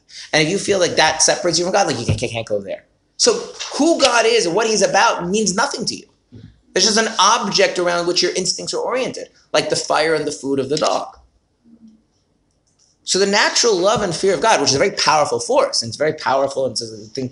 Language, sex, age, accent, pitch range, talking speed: English, male, 30-49, American, 150-205 Hz, 235 wpm